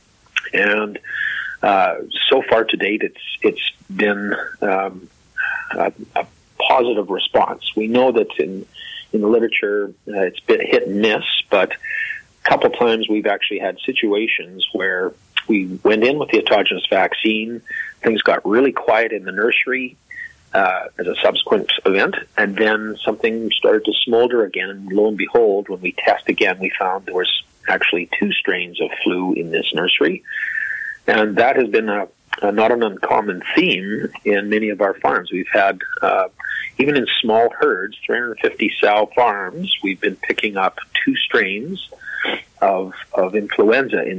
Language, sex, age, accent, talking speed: English, male, 40-59, American, 160 wpm